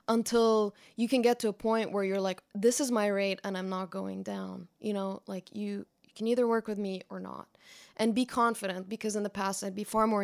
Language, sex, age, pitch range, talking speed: English, female, 20-39, 200-240 Hz, 245 wpm